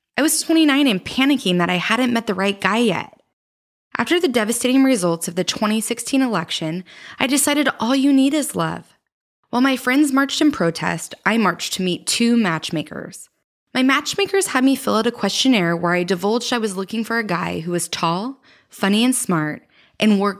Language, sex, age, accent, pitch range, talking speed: English, female, 20-39, American, 185-270 Hz, 190 wpm